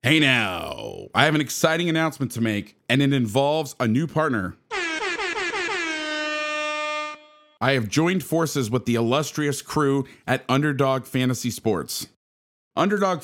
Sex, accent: male, American